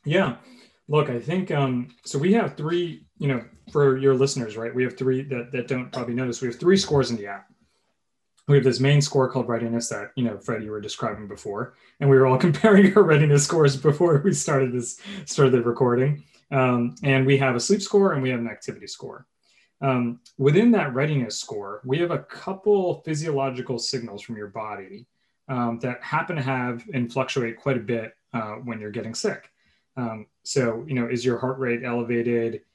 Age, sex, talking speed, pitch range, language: 30-49, male, 205 wpm, 115-135 Hz, English